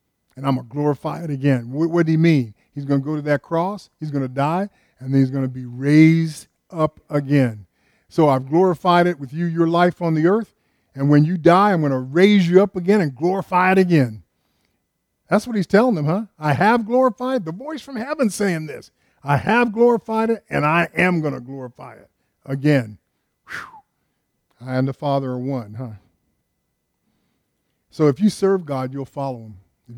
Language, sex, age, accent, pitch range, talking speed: English, male, 50-69, American, 130-175 Hz, 205 wpm